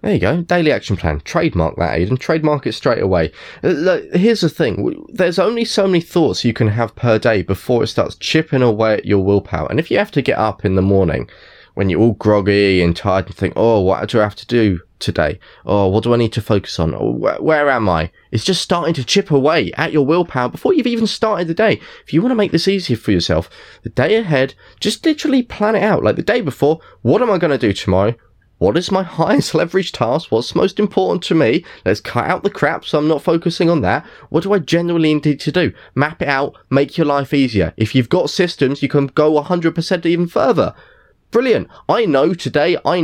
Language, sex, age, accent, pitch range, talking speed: English, male, 20-39, British, 110-175 Hz, 230 wpm